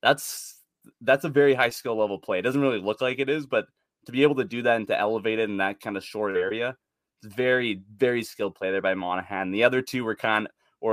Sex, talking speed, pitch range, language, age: male, 255 wpm, 100-125 Hz, English, 20-39